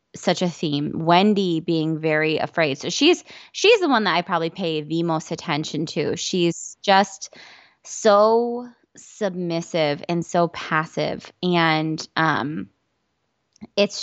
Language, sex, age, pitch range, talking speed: English, female, 20-39, 160-190 Hz, 130 wpm